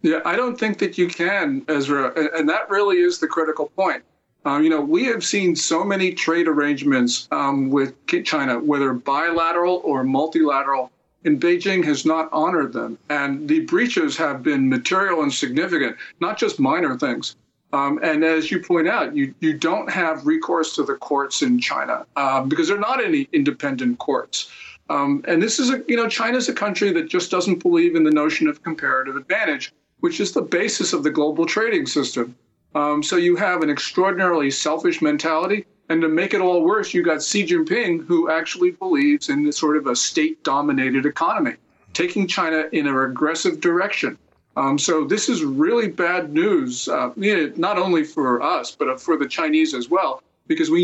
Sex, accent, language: male, American, English